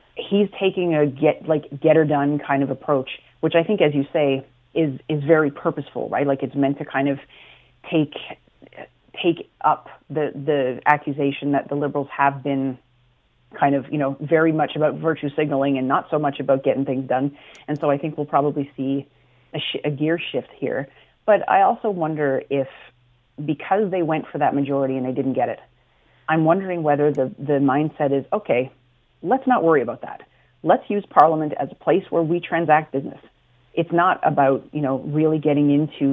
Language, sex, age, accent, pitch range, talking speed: English, female, 30-49, American, 140-155 Hz, 190 wpm